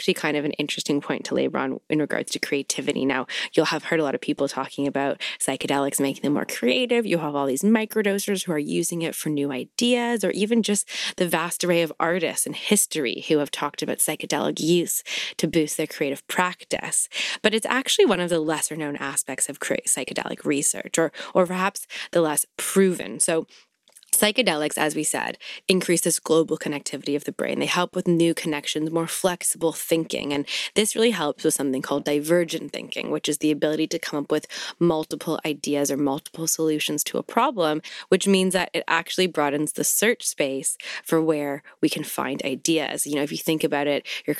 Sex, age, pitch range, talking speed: female, 20-39, 150-185 Hz, 200 wpm